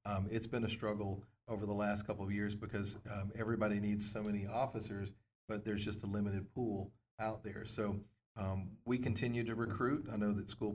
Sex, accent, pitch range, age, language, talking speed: male, American, 100-110 Hz, 40-59, English, 200 wpm